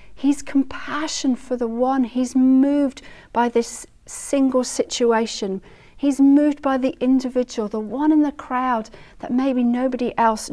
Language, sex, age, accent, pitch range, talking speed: English, female, 40-59, British, 235-290 Hz, 140 wpm